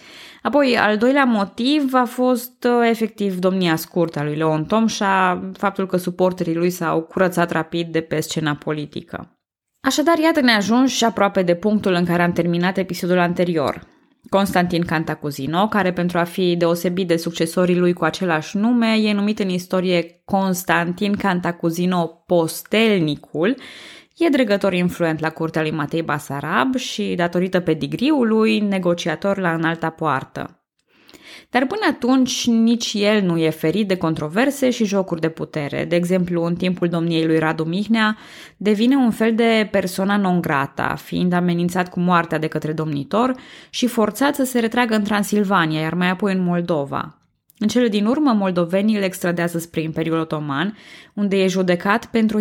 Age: 20-39